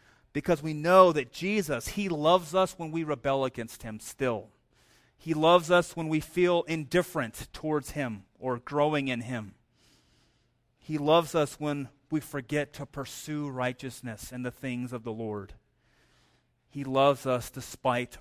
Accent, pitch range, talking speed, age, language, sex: American, 115-140 Hz, 150 wpm, 30-49, English, male